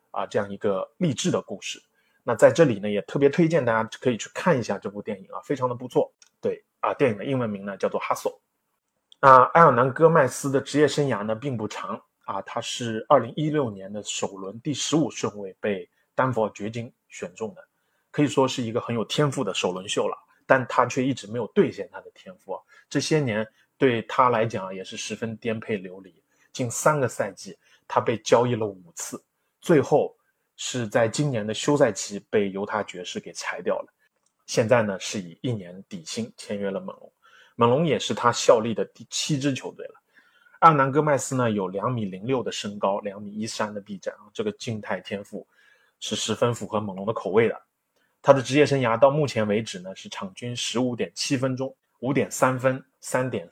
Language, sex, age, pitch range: Chinese, male, 20-39, 105-145 Hz